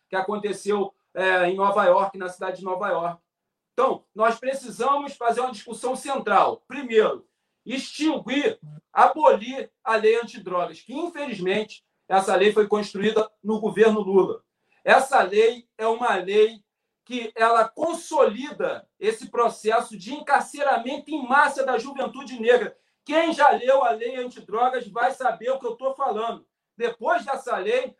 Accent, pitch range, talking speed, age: Brazilian, 215-275 Hz, 135 wpm, 40-59